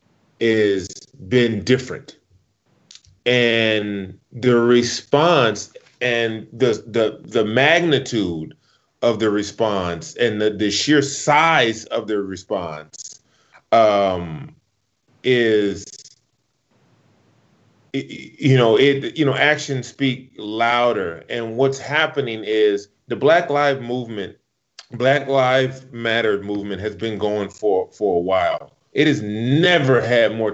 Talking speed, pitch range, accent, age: 110 wpm, 105-140 Hz, American, 30-49